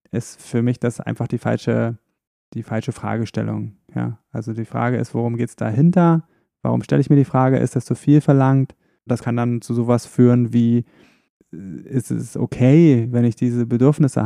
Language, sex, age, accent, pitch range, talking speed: German, male, 20-39, German, 115-135 Hz, 175 wpm